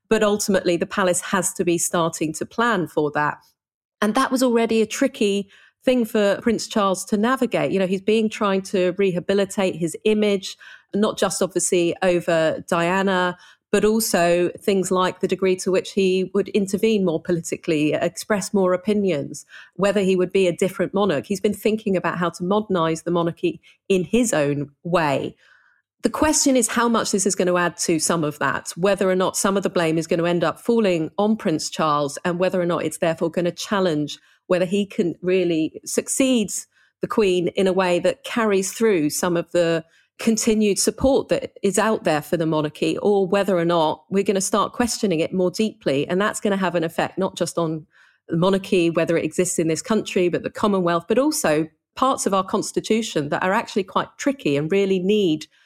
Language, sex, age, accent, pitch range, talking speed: English, female, 40-59, British, 170-210 Hz, 200 wpm